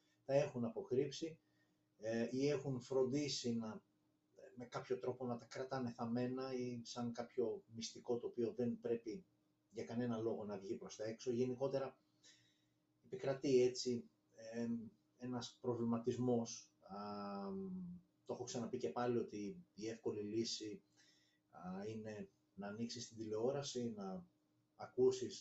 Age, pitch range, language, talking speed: 30-49, 110-135 Hz, Greek, 120 wpm